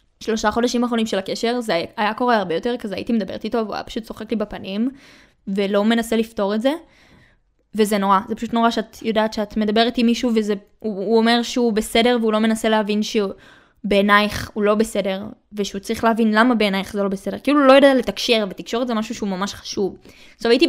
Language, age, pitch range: Hebrew, 20-39, 210-255 Hz